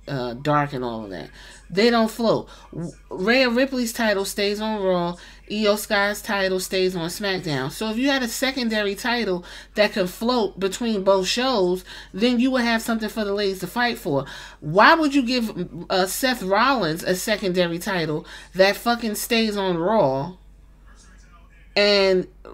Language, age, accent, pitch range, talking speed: English, 30-49, American, 180-230 Hz, 160 wpm